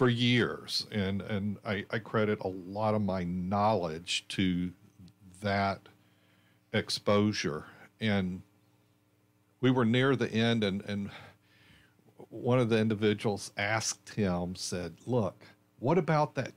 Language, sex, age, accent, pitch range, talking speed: English, male, 50-69, American, 95-120 Hz, 125 wpm